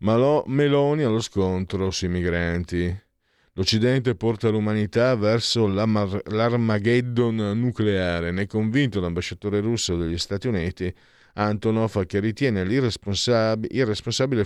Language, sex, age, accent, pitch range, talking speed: Italian, male, 50-69, native, 90-120 Hz, 100 wpm